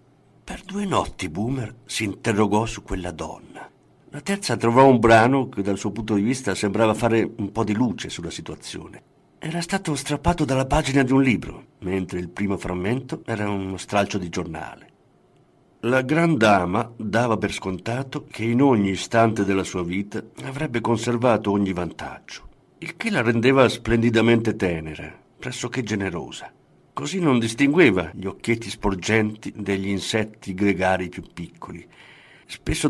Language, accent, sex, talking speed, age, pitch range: Italian, native, male, 150 wpm, 50-69, 100-140 Hz